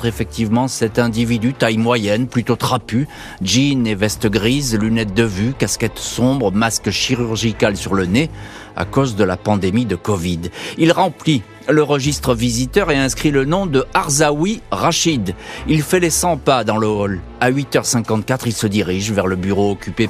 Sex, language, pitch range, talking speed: male, French, 105-135 Hz, 170 wpm